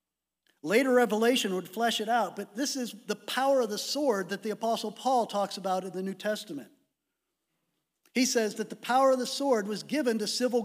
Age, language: 50-69, English